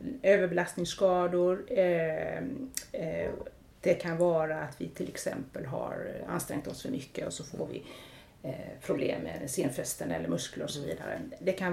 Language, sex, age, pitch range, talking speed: English, female, 30-49, 175-225 Hz, 140 wpm